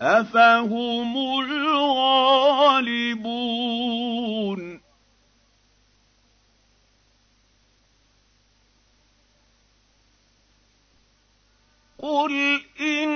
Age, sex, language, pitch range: 50-69, male, Arabic, 185-280 Hz